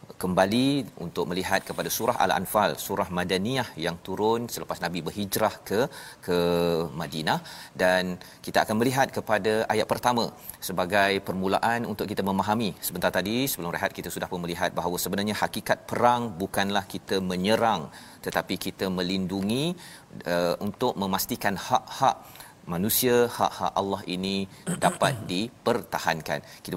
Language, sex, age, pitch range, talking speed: Malayalam, male, 40-59, 95-120 Hz, 130 wpm